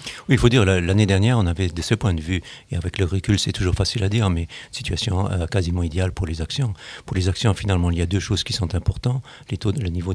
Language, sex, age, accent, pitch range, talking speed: French, male, 60-79, French, 85-105 Hz, 280 wpm